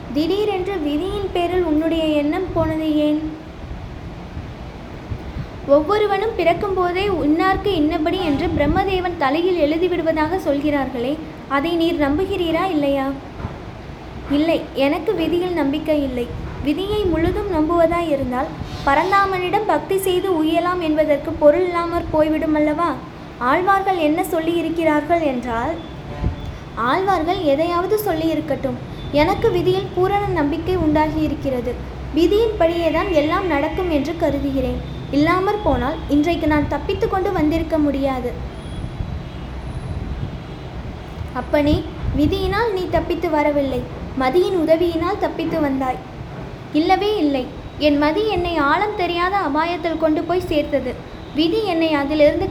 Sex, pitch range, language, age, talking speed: female, 295-365 Hz, Tamil, 20-39, 105 wpm